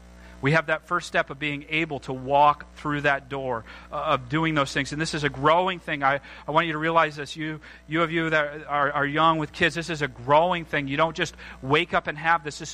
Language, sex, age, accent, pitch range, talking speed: English, male, 40-59, American, 135-180 Hz, 255 wpm